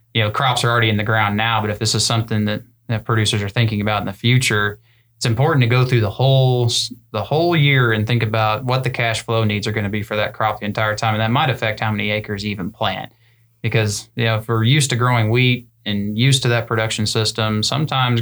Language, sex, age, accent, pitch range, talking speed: English, male, 20-39, American, 110-120 Hz, 255 wpm